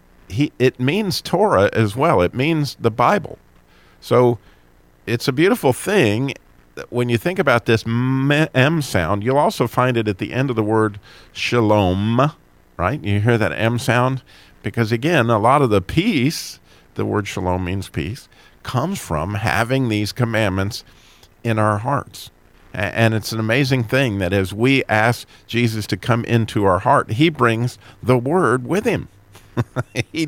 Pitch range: 105-130 Hz